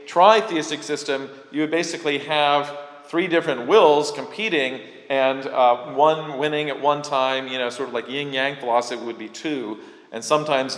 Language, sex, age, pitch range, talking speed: English, male, 40-59, 115-145 Hz, 175 wpm